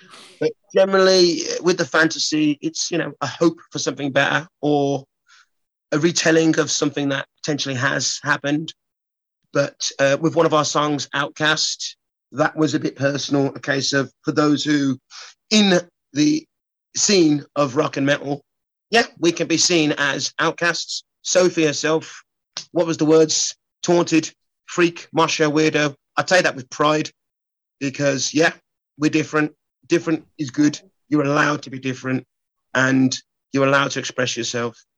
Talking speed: 150 wpm